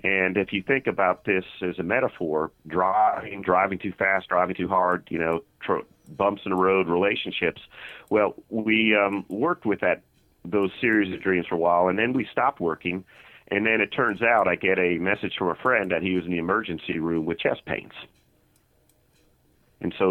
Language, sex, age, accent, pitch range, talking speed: English, male, 40-59, American, 90-105 Hz, 195 wpm